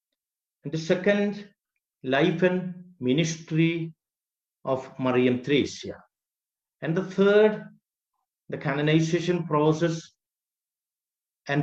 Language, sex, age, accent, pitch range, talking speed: English, male, 50-69, Indian, 140-180 Hz, 85 wpm